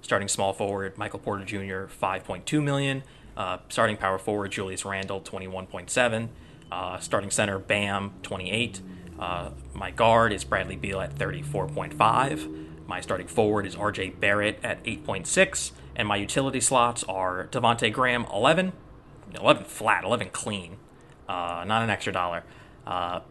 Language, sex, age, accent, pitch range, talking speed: English, male, 20-39, American, 95-130 Hz, 135 wpm